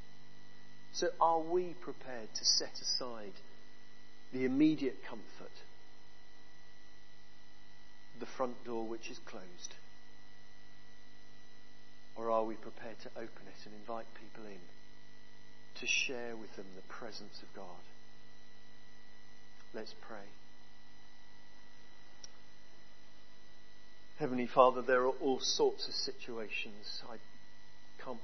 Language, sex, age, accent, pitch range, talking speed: English, male, 50-69, British, 115-130 Hz, 100 wpm